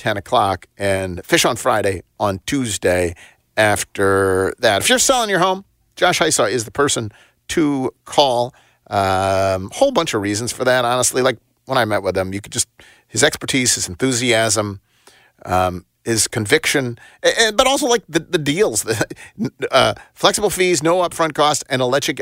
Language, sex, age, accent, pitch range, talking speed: English, male, 40-59, American, 100-135 Hz, 165 wpm